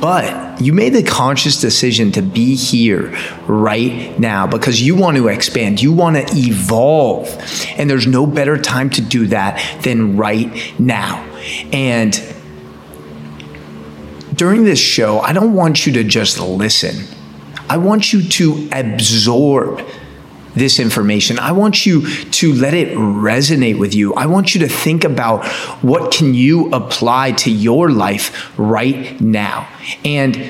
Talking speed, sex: 145 wpm, male